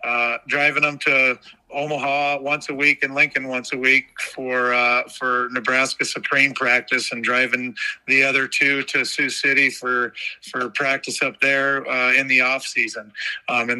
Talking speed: 170 wpm